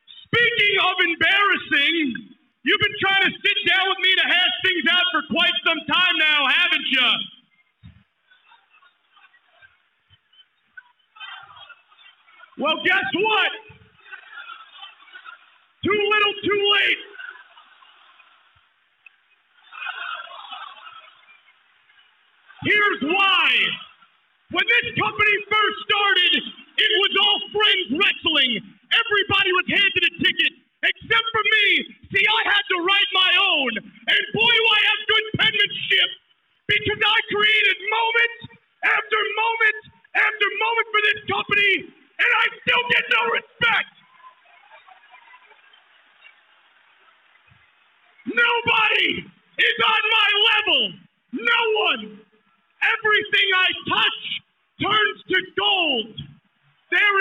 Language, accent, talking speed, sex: English, American, 100 wpm, male